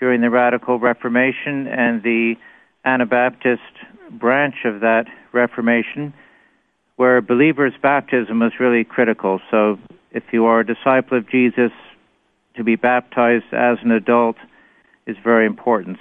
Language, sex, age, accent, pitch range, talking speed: English, male, 50-69, American, 115-130 Hz, 125 wpm